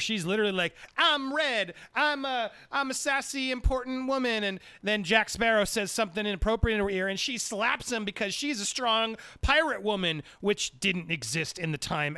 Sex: male